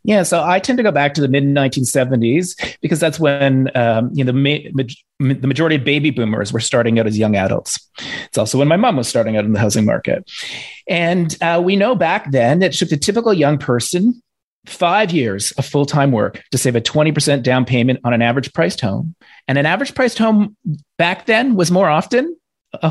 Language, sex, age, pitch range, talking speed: English, male, 30-49, 140-190 Hz, 210 wpm